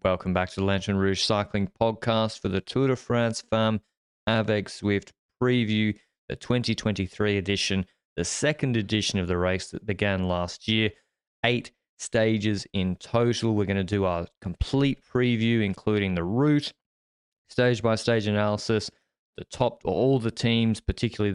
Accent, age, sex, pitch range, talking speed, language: Australian, 20-39, male, 95-115 Hz, 150 wpm, English